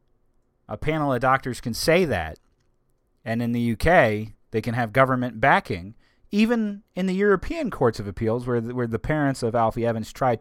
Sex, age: male, 30-49